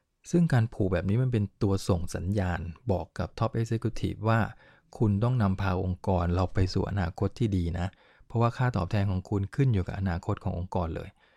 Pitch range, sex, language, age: 95-115 Hz, male, English, 20-39